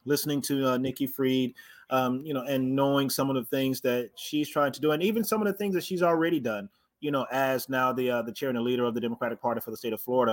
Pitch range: 130-160 Hz